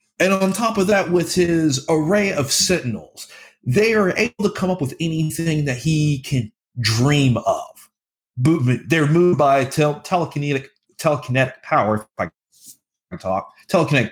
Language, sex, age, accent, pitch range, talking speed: English, male, 30-49, American, 125-180 Hz, 150 wpm